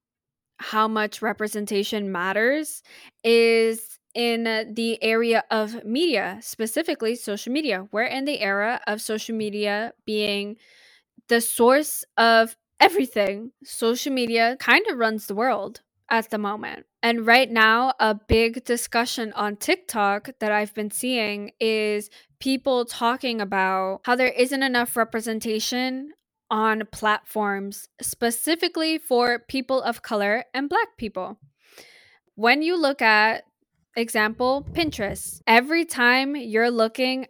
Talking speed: 120 wpm